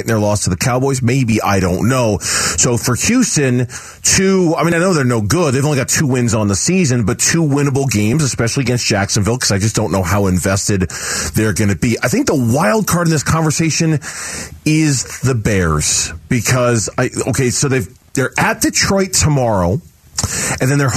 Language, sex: English, male